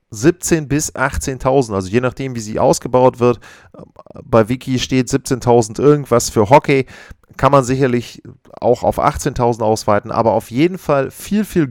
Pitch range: 115-145 Hz